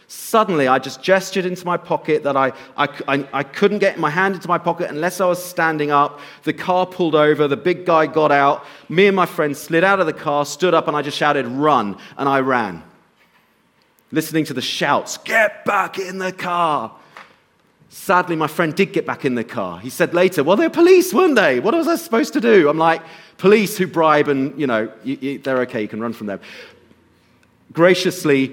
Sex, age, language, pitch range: male, 30-49, English, 135-180 Hz